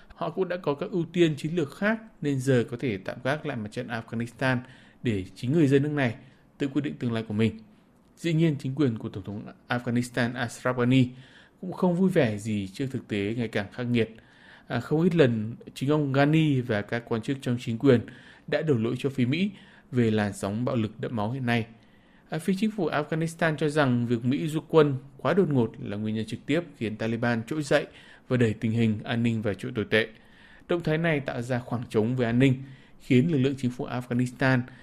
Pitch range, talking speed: 115-145 Hz, 225 wpm